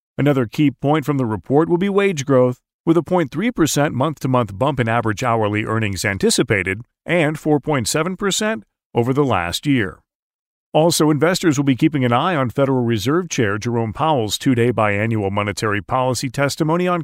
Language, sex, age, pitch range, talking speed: English, male, 40-59, 110-155 Hz, 160 wpm